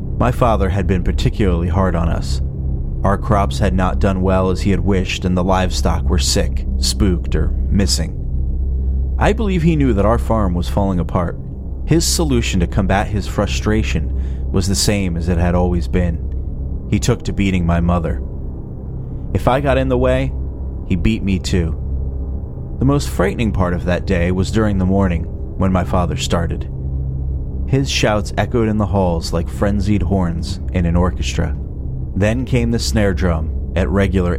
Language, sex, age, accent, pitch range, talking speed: English, male, 30-49, American, 70-100 Hz, 175 wpm